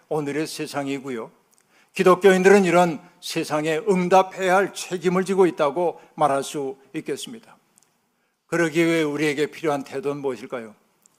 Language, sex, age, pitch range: Korean, male, 60-79, 150-185 Hz